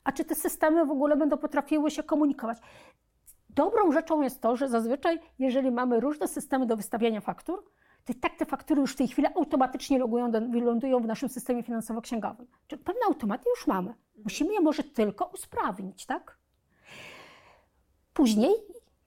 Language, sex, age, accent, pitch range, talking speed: Polish, female, 40-59, native, 230-295 Hz, 155 wpm